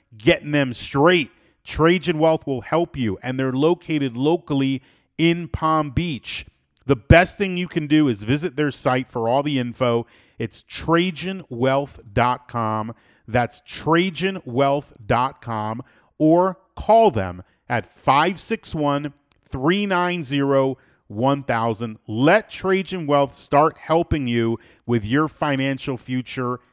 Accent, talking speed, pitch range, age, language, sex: American, 110 wpm, 120-165 Hz, 40-59, English, male